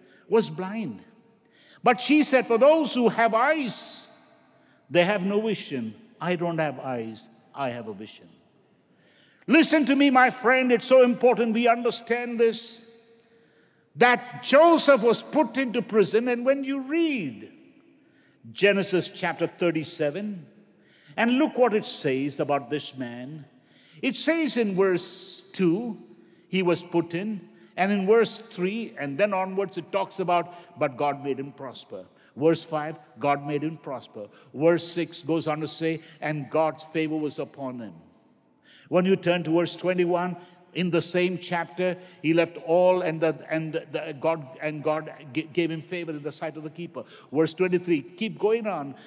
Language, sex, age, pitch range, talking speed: English, male, 60-79, 155-225 Hz, 155 wpm